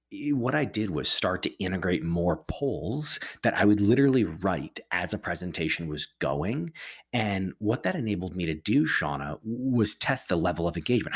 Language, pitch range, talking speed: English, 90-115 Hz, 175 wpm